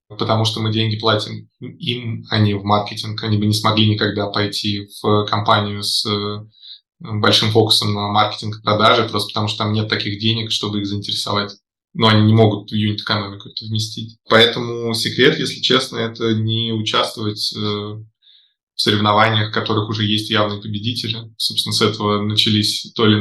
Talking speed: 165 wpm